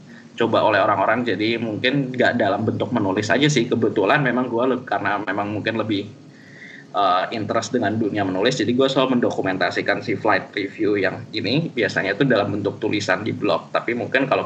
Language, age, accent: Indonesian, 10-29, native